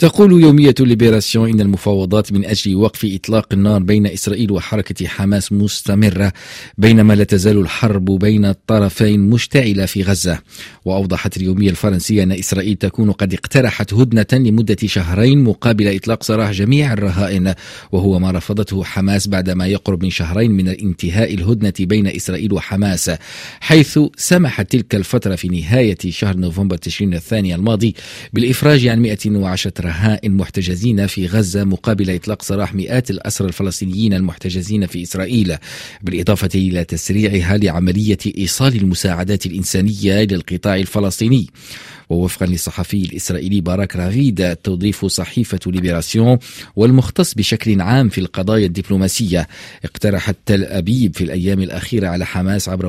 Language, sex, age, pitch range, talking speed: Arabic, male, 40-59, 95-110 Hz, 130 wpm